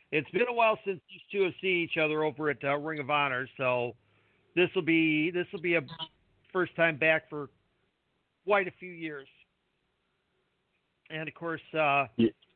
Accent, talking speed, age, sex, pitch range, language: American, 160 wpm, 50-69, male, 135-175 Hz, English